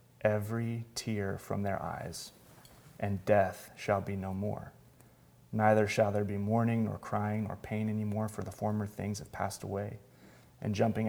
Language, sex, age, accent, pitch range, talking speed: English, male, 30-49, American, 105-120 Hz, 160 wpm